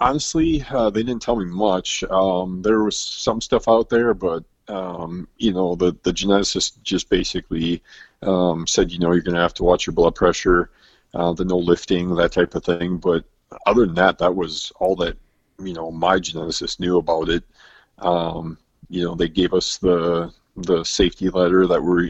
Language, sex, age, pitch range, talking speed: English, male, 40-59, 85-95 Hz, 195 wpm